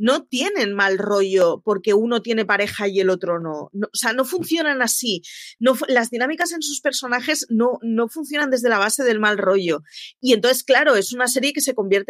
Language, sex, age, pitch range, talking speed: Spanish, female, 30-49, 195-255 Hz, 205 wpm